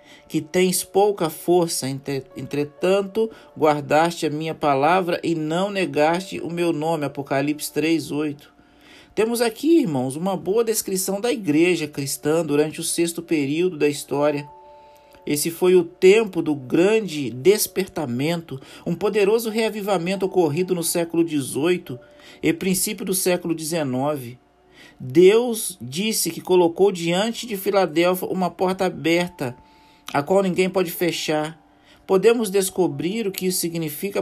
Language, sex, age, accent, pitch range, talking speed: Portuguese, male, 50-69, Brazilian, 150-185 Hz, 125 wpm